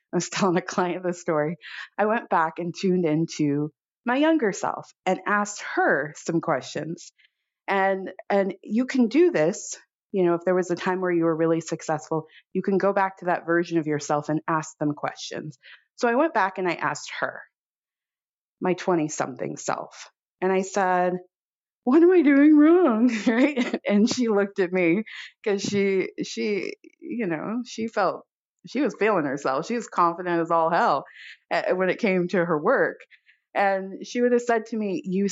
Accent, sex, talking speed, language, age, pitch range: American, female, 185 wpm, English, 30-49, 165-215 Hz